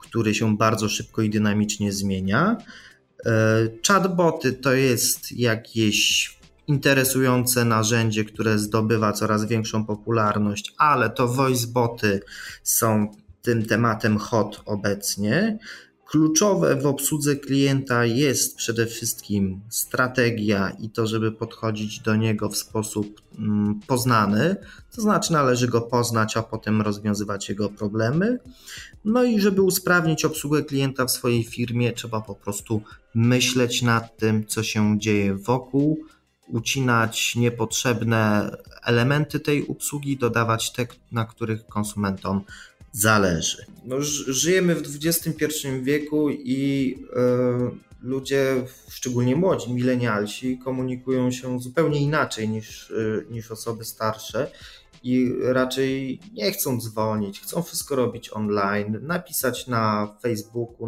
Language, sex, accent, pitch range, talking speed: Polish, male, native, 110-135 Hz, 110 wpm